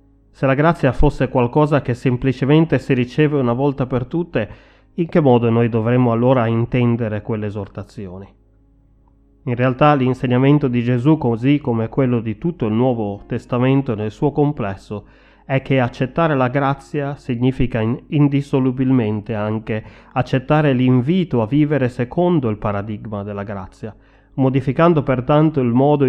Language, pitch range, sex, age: Italian, 110-140 Hz, male, 30-49